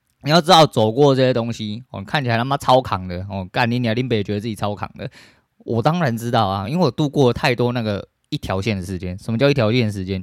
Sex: male